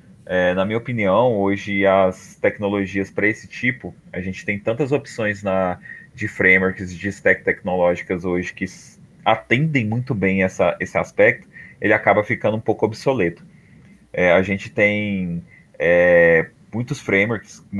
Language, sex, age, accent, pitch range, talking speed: Portuguese, male, 20-39, Brazilian, 95-110 Hz, 130 wpm